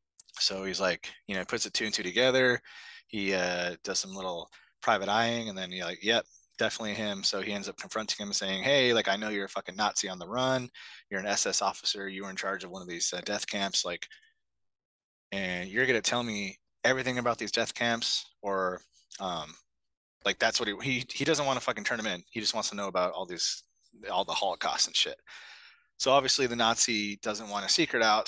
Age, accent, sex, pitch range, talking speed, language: 20-39, American, male, 90-115 Hz, 225 wpm, English